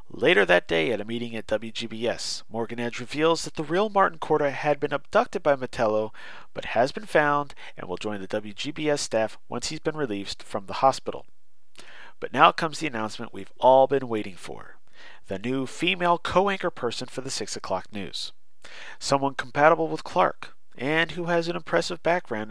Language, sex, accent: English, male, American